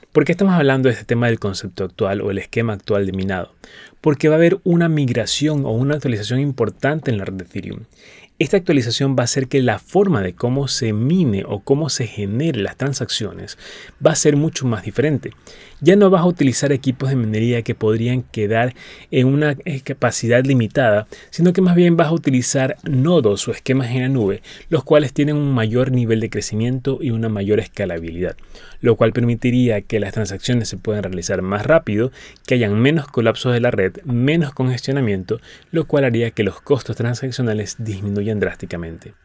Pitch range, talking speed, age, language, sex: 110-140 Hz, 190 wpm, 30-49, Spanish, male